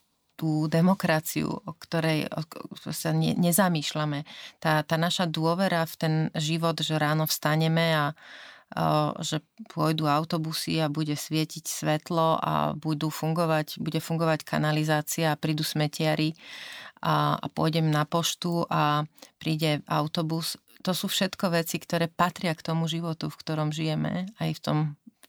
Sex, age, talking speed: female, 30-49, 140 wpm